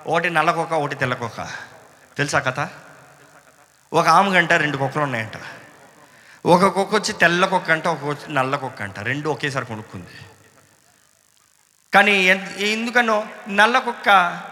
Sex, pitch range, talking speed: male, 155-205 Hz, 105 wpm